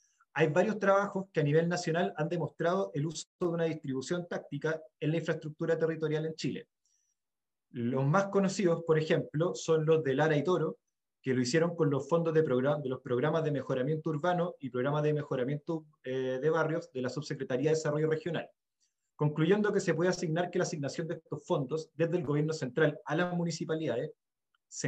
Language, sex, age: Spanish, male, 30-49